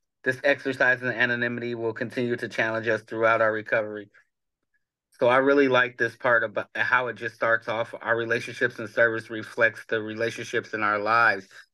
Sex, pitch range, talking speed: male, 120-150 Hz, 175 wpm